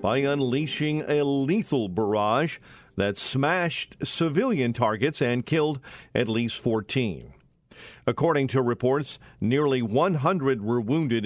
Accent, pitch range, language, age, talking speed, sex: American, 115-145 Hz, English, 50-69, 110 wpm, male